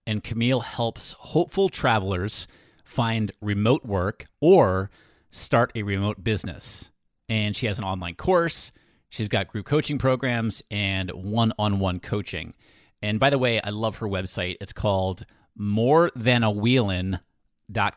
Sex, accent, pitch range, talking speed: male, American, 95-125 Hz, 125 wpm